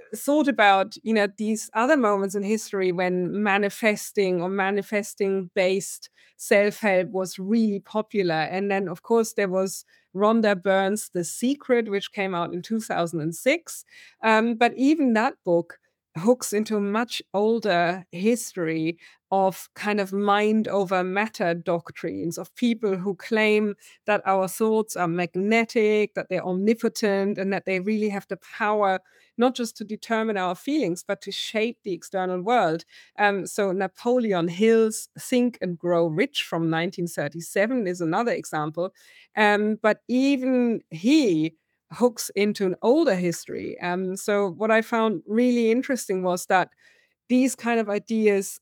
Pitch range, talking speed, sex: 185-225 Hz, 145 wpm, female